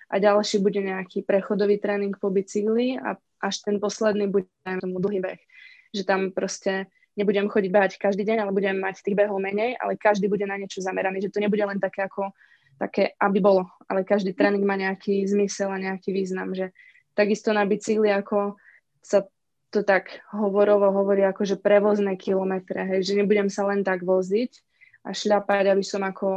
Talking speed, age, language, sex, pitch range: 180 wpm, 20-39, Slovak, female, 195-205 Hz